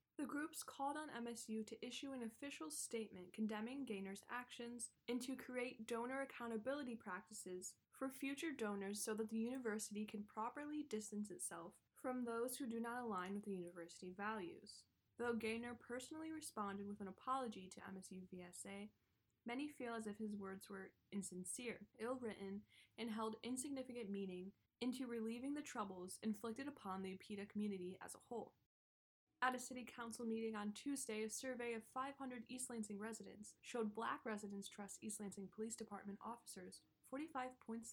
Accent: American